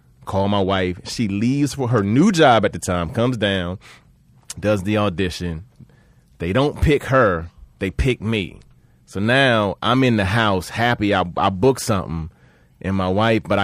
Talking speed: 170 wpm